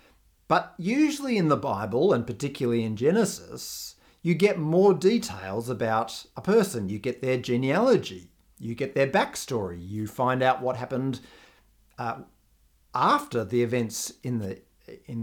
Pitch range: 115-175 Hz